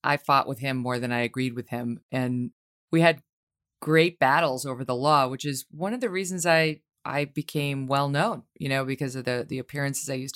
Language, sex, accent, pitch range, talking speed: English, female, American, 130-170 Hz, 220 wpm